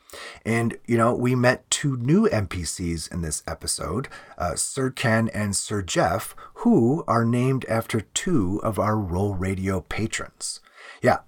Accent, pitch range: American, 95-120 Hz